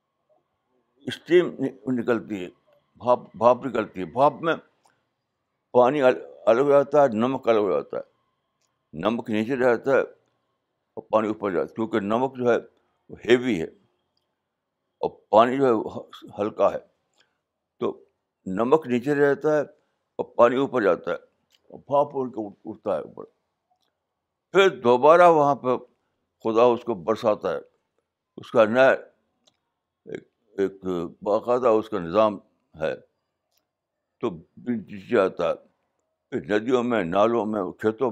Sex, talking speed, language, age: male, 130 wpm, Urdu, 60-79